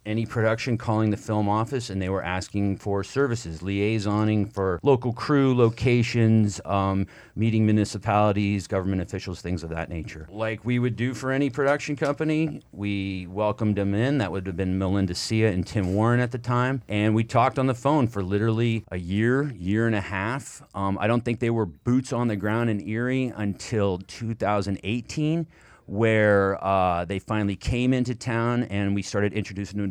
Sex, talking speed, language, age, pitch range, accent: male, 180 wpm, English, 30-49, 95-120 Hz, American